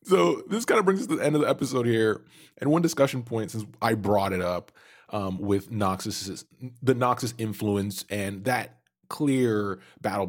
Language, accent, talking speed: English, American, 185 wpm